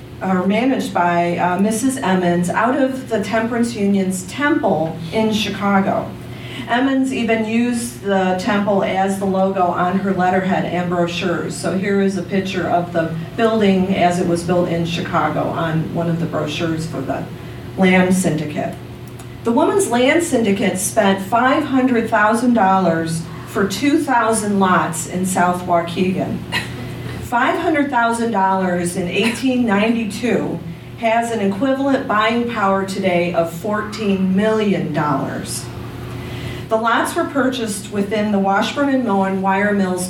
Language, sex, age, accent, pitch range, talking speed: English, female, 40-59, American, 175-225 Hz, 125 wpm